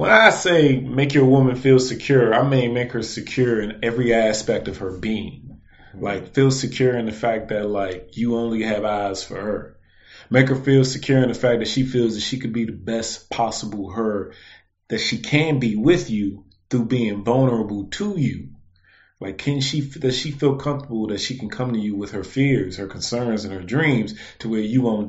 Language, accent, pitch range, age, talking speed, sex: English, American, 100-130 Hz, 30-49, 210 wpm, male